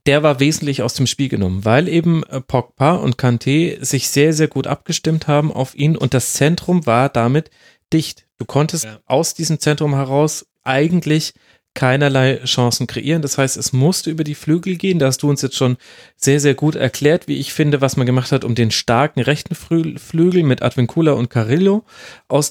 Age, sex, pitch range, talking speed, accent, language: 40-59, male, 125-150 Hz, 190 wpm, German, German